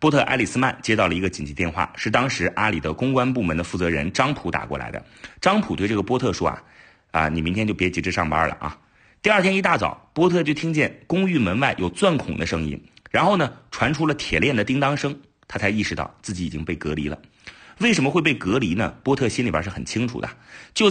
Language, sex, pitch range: Chinese, male, 85-135 Hz